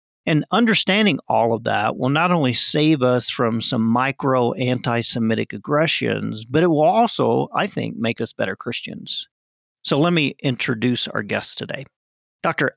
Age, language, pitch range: 40-59, English, 115-145 Hz